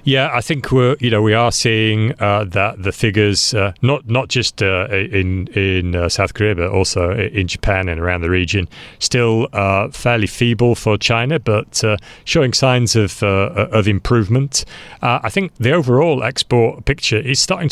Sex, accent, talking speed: male, British, 185 wpm